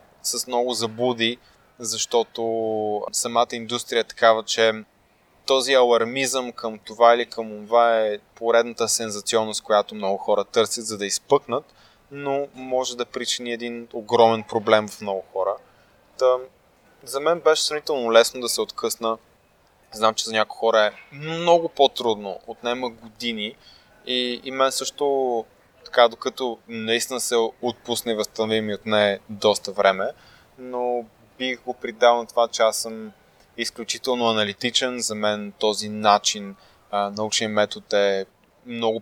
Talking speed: 135 wpm